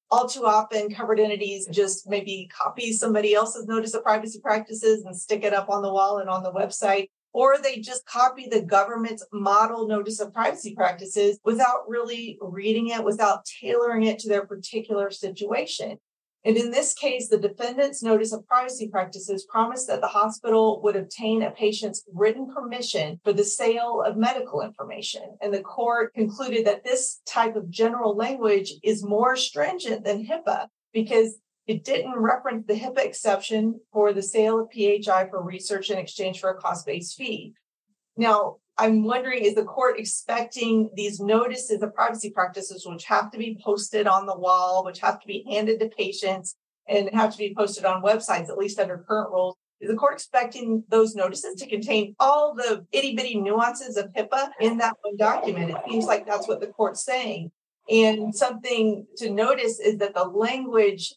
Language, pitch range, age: English, 200-230 Hz, 40-59